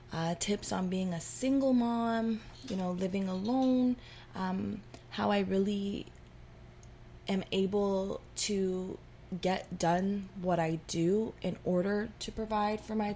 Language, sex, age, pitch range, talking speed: English, female, 20-39, 175-215 Hz, 130 wpm